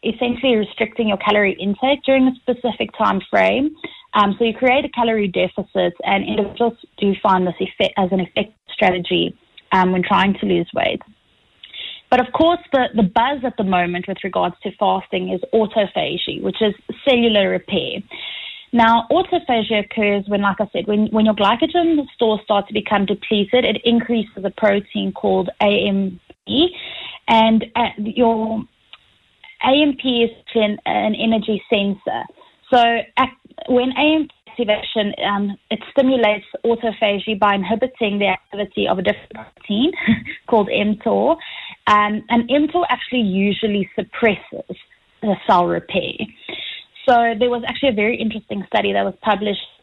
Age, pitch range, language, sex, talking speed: 20-39, 200-245 Hz, English, female, 145 wpm